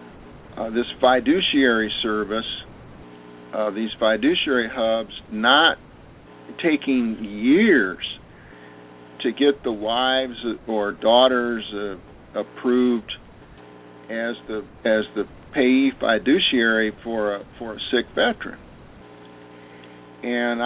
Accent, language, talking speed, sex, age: American, English, 95 wpm, male, 50-69